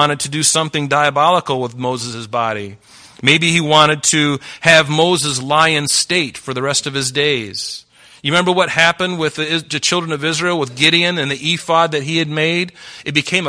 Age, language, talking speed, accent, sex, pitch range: 40-59, English, 195 wpm, American, male, 115-150 Hz